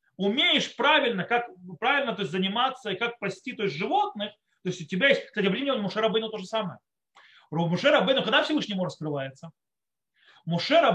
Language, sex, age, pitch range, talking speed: Russian, male, 30-49, 185-280 Hz, 185 wpm